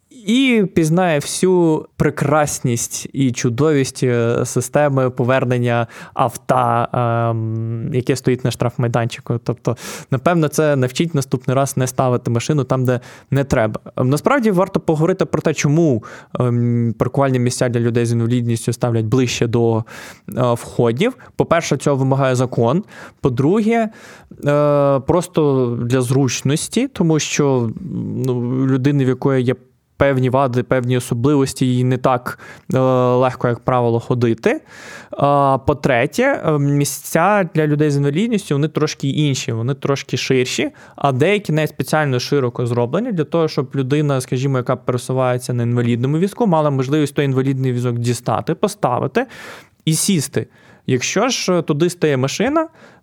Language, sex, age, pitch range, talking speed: Ukrainian, male, 20-39, 125-155 Hz, 125 wpm